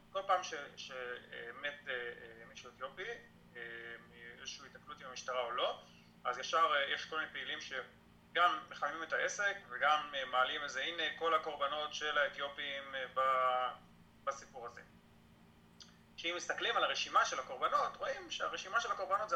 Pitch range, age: 130-160 Hz, 30-49